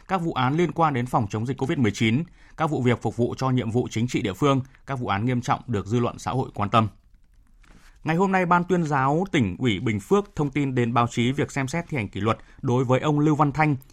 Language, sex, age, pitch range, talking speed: Vietnamese, male, 20-39, 115-150 Hz, 265 wpm